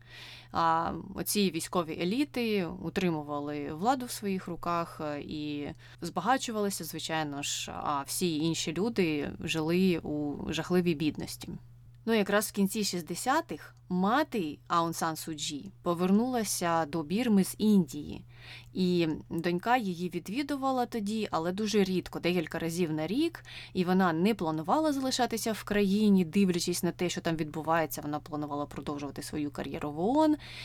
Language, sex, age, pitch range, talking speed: Ukrainian, female, 20-39, 155-200 Hz, 130 wpm